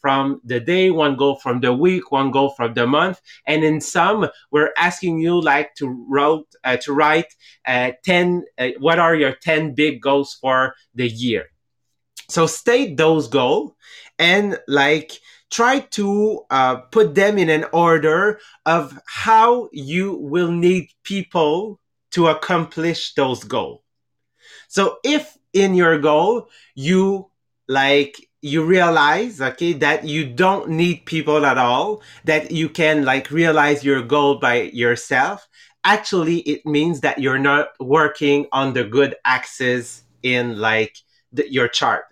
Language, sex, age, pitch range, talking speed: English, male, 30-49, 135-175 Hz, 145 wpm